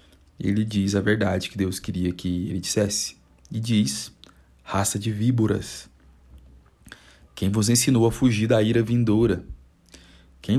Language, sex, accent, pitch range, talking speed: Portuguese, male, Brazilian, 90-110 Hz, 135 wpm